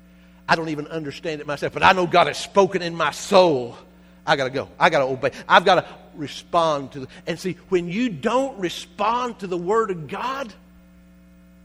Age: 60-79